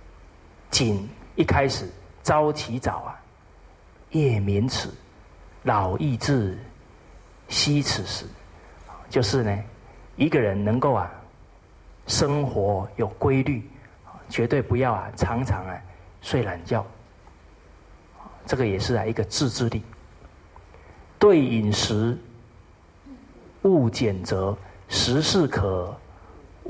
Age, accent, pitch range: 40-59, native, 90-130 Hz